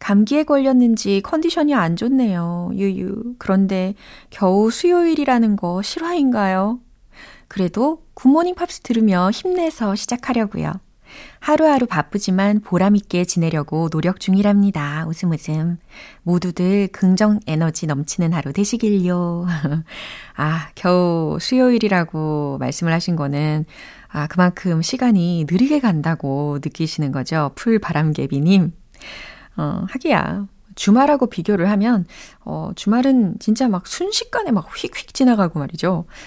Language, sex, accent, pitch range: Korean, female, native, 165-235 Hz